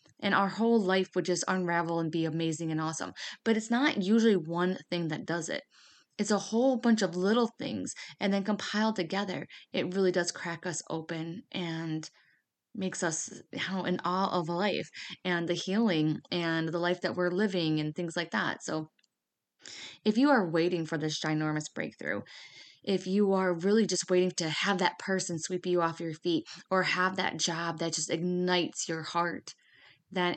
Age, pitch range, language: 20-39, 165-195 Hz, English